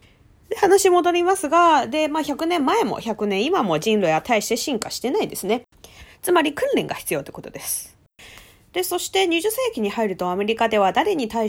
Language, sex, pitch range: Japanese, female, 215-360 Hz